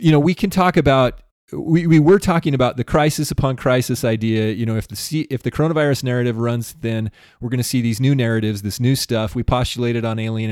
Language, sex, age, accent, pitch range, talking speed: English, male, 30-49, American, 115-140 Hz, 235 wpm